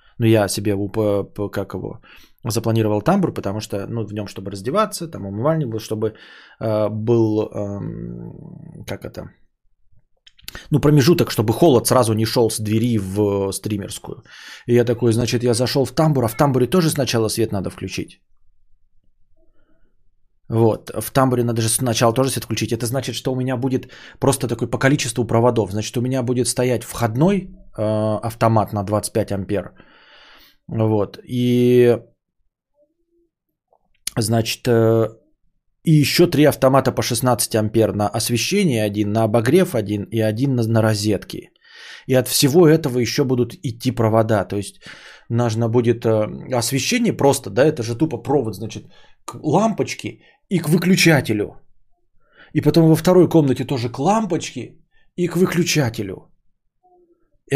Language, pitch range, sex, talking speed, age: Bulgarian, 110-135 Hz, male, 145 wpm, 20-39